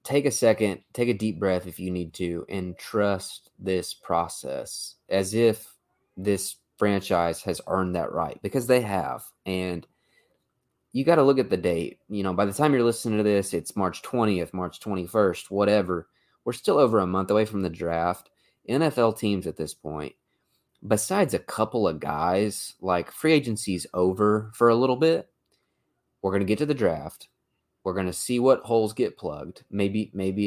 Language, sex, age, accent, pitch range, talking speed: English, male, 20-39, American, 90-115 Hz, 185 wpm